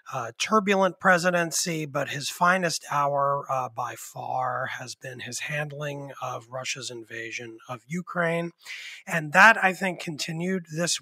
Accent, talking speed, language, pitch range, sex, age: American, 135 wpm, English, 140-170 Hz, male, 30-49